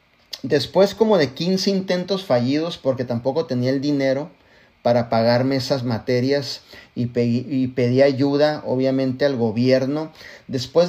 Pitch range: 125-160 Hz